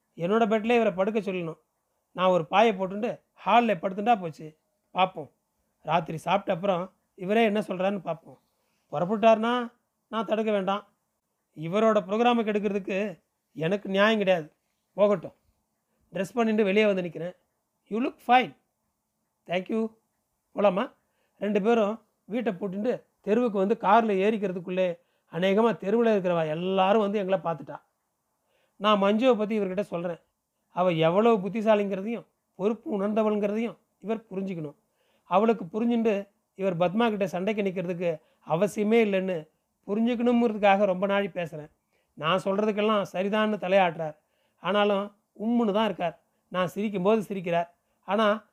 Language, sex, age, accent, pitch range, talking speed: Tamil, male, 30-49, native, 185-220 Hz, 115 wpm